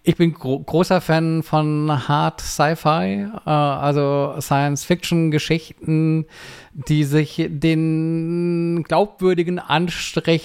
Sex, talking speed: male, 80 wpm